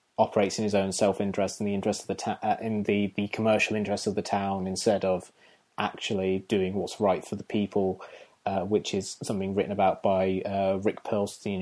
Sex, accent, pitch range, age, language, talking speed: male, British, 95-105 Hz, 20-39, English, 200 wpm